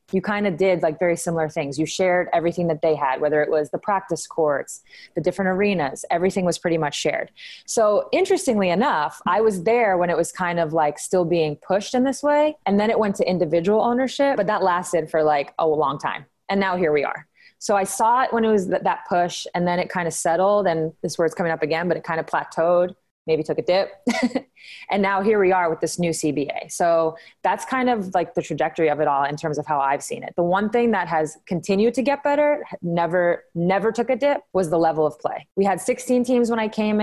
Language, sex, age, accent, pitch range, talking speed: English, female, 20-39, American, 165-205 Hz, 240 wpm